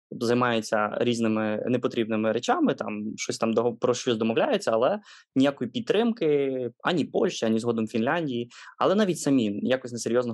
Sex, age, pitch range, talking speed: male, 20-39, 115-130 Hz, 140 wpm